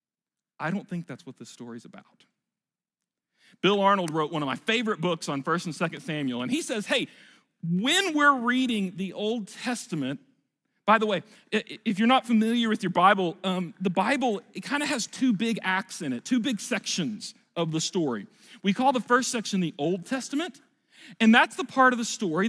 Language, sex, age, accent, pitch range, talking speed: English, male, 40-59, American, 185-235 Hz, 195 wpm